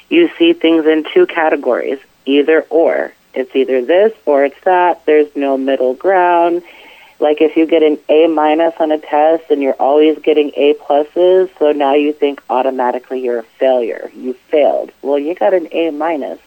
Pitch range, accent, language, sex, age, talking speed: 140-170 Hz, American, English, female, 30-49, 175 wpm